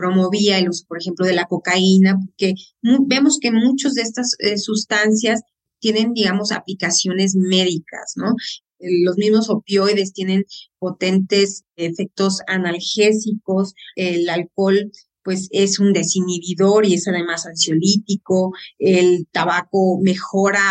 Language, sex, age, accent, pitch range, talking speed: Spanish, female, 30-49, Mexican, 175-210 Hz, 115 wpm